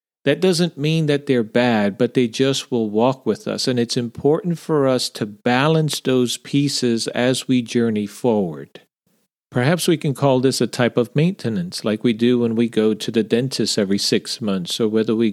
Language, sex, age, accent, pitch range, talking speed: English, male, 50-69, American, 115-140 Hz, 195 wpm